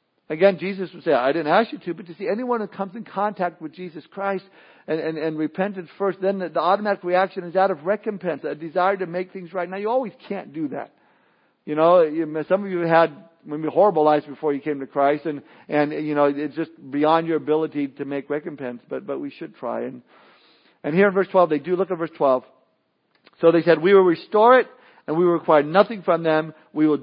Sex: male